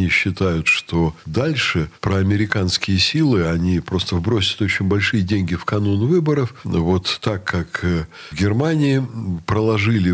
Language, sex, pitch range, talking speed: Russian, male, 90-130 Hz, 120 wpm